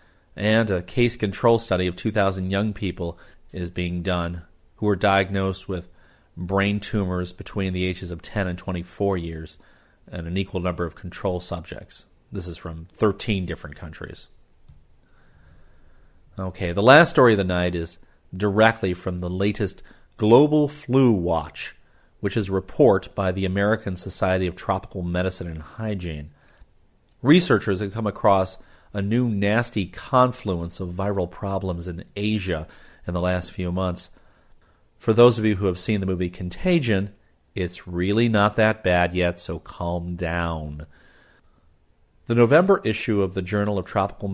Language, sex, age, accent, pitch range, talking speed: English, male, 40-59, American, 90-105 Hz, 150 wpm